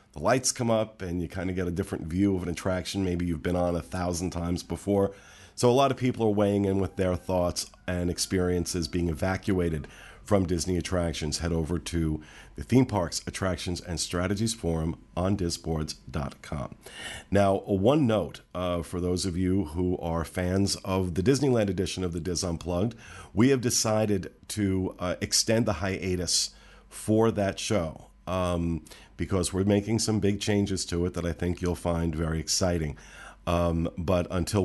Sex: male